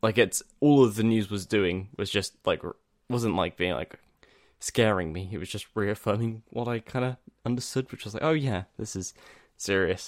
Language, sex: English, male